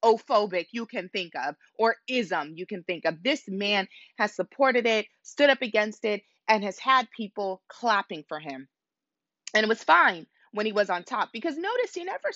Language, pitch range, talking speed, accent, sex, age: English, 160-245 Hz, 195 wpm, American, female, 20-39